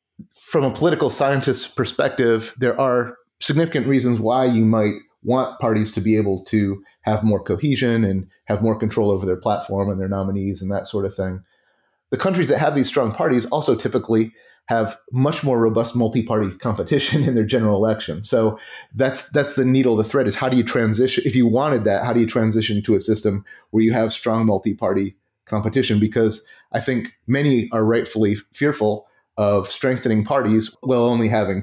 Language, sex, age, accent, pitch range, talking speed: English, male, 30-49, American, 105-130 Hz, 185 wpm